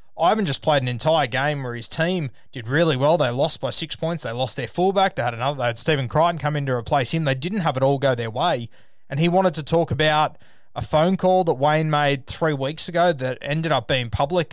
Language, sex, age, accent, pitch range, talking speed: English, male, 20-39, Australian, 125-155 Hz, 250 wpm